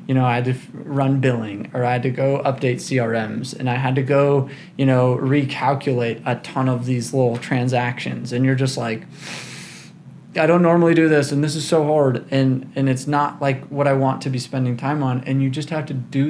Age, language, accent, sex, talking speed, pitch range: 20-39, English, American, male, 225 wpm, 125-145 Hz